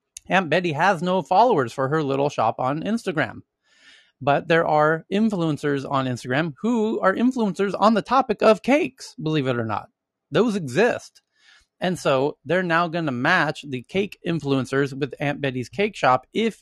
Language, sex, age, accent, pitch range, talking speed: English, male, 30-49, American, 130-180 Hz, 170 wpm